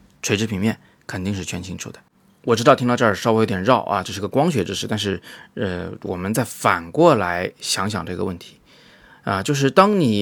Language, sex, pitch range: Chinese, male, 100-135 Hz